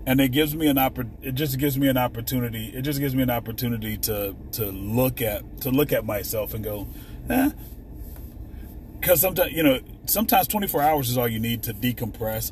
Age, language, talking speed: 30-49, English, 205 wpm